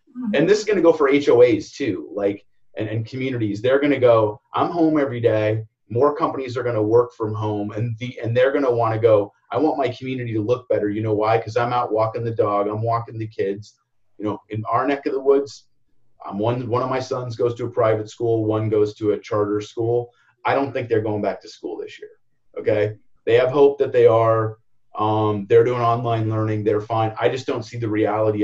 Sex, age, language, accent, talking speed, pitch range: male, 30-49, English, American, 240 wpm, 105-125 Hz